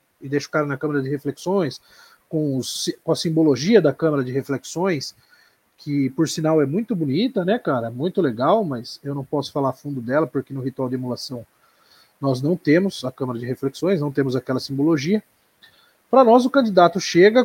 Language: Portuguese